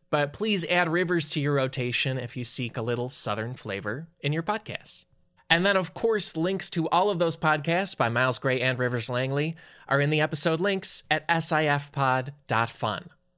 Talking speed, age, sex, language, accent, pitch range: 180 wpm, 20-39, male, English, American, 130-170 Hz